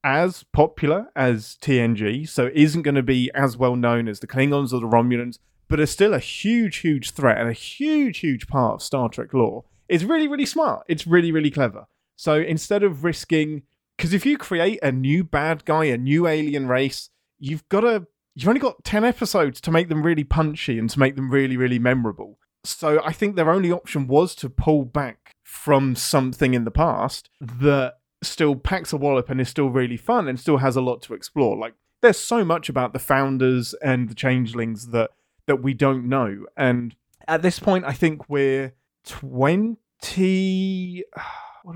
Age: 30-49